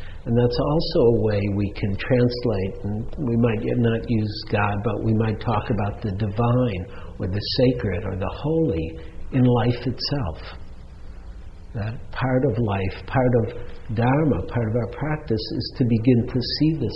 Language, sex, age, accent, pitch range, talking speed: English, male, 60-79, American, 95-125 Hz, 165 wpm